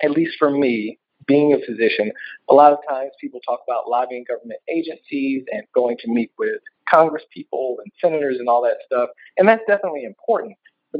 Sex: male